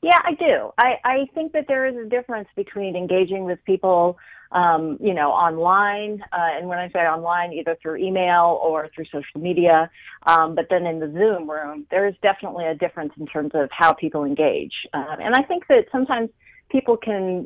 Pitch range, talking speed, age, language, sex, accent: 165-215 Hz, 200 wpm, 40-59, English, female, American